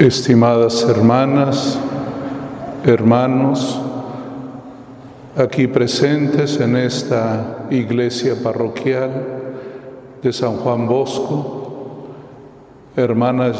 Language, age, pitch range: Spanish, 50-69, 120-135 Hz